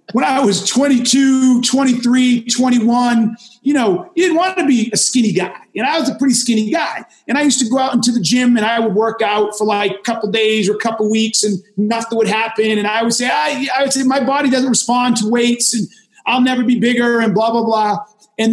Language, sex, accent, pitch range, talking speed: English, male, American, 225-280 Hz, 240 wpm